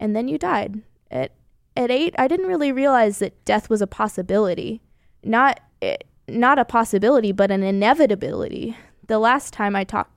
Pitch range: 195-235 Hz